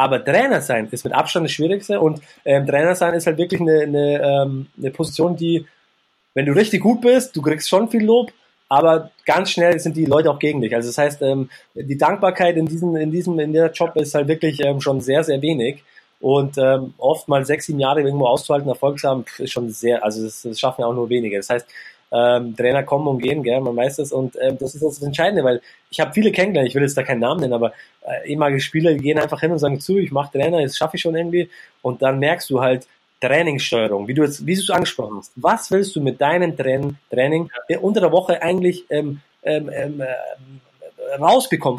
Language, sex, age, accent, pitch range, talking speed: English, male, 20-39, German, 135-170 Hz, 230 wpm